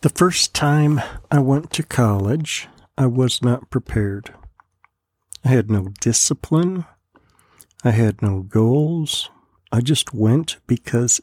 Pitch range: 110-145 Hz